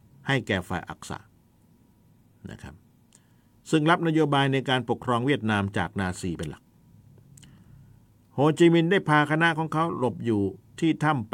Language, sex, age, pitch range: Thai, male, 60-79, 100-125 Hz